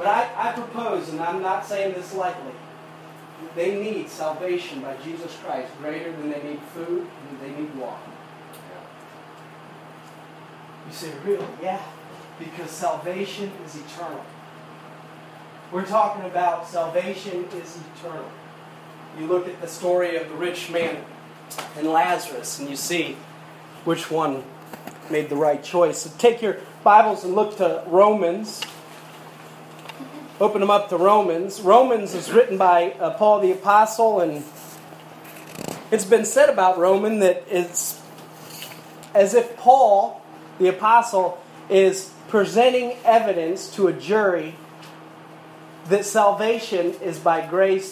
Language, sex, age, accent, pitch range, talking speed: English, male, 30-49, American, 160-200 Hz, 130 wpm